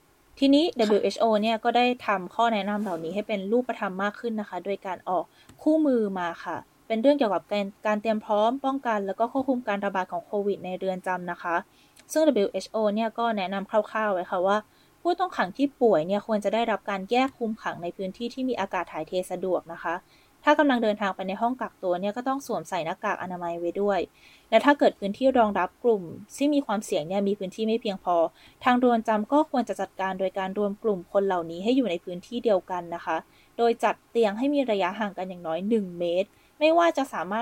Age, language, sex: 20-39, Thai, female